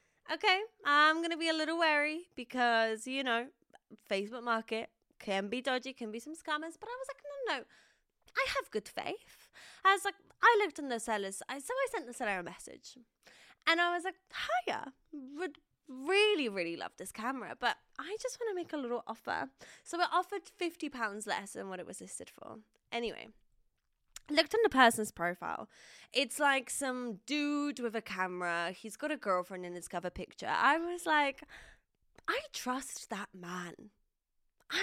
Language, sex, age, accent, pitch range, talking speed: English, female, 10-29, British, 230-355 Hz, 185 wpm